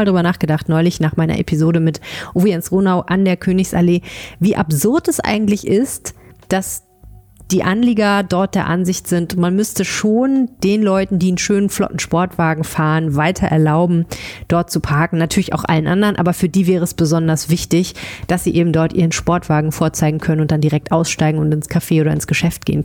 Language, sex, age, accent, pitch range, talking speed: German, female, 30-49, German, 155-190 Hz, 185 wpm